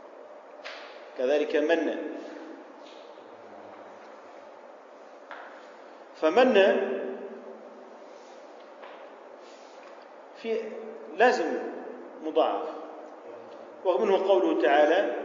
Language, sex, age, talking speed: Arabic, male, 40-59, 40 wpm